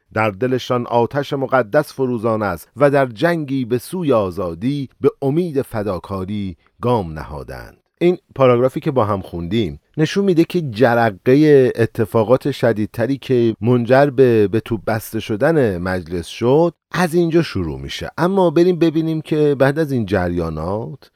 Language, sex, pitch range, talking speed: Persian, male, 100-140 Hz, 135 wpm